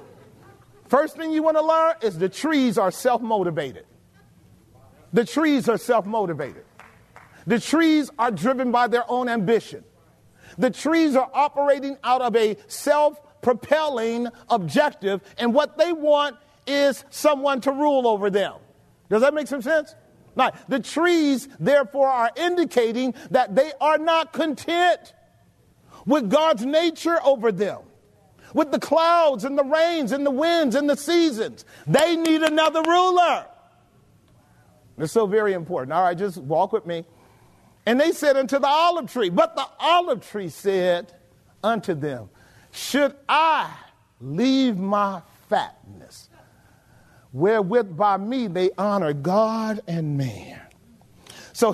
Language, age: English, 40-59